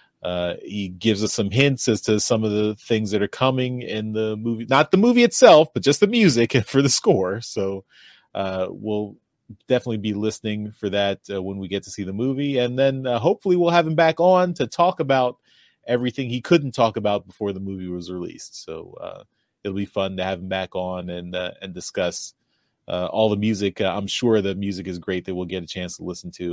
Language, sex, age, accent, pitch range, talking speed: English, male, 30-49, American, 95-130 Hz, 225 wpm